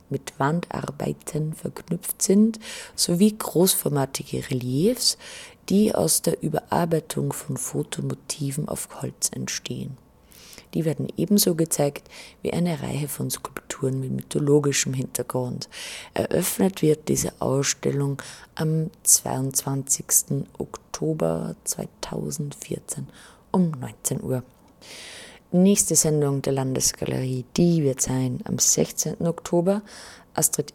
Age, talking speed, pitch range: 30-49, 100 wpm, 135-180 Hz